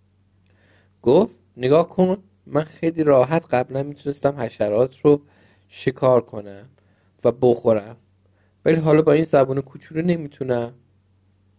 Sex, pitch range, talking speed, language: male, 95-145 Hz, 110 wpm, Persian